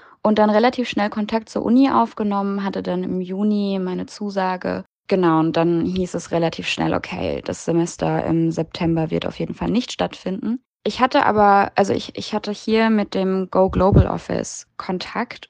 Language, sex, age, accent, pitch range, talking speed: German, female, 20-39, German, 160-200 Hz, 180 wpm